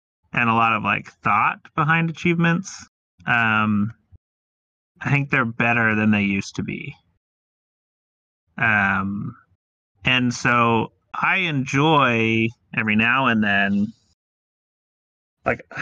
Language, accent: English, American